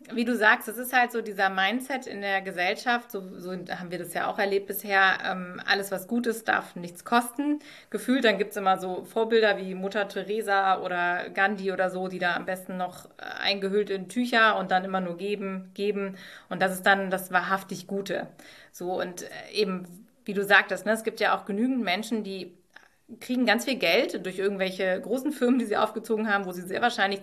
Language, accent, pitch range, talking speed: German, German, 190-230 Hz, 205 wpm